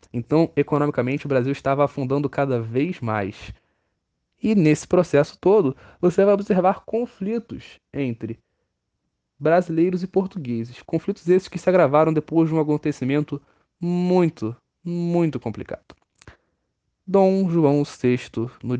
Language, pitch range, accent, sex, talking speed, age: Portuguese, 120-165 Hz, Brazilian, male, 120 wpm, 10-29